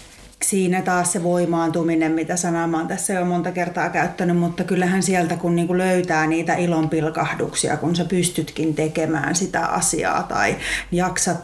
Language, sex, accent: Finnish, female, native